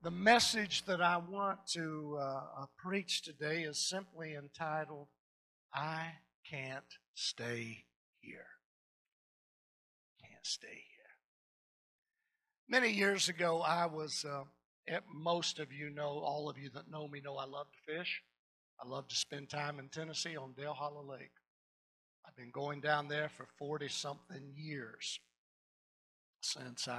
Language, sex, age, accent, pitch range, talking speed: English, male, 60-79, American, 125-175 Hz, 135 wpm